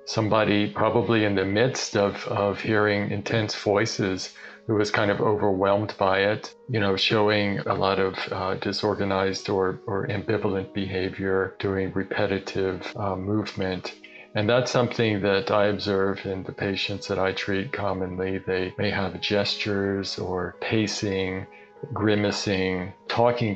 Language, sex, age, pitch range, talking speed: English, male, 40-59, 95-105 Hz, 140 wpm